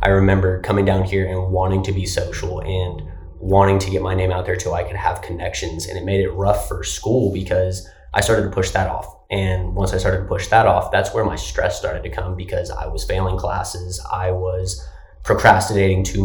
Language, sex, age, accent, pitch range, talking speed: English, male, 20-39, American, 90-100 Hz, 225 wpm